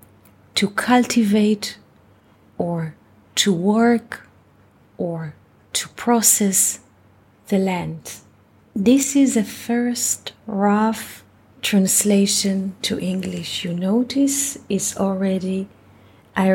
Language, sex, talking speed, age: English, female, 85 wpm, 30-49